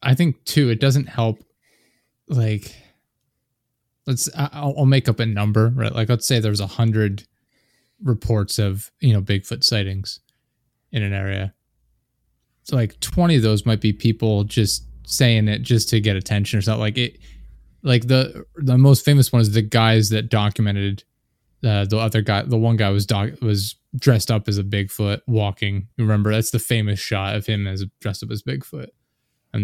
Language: English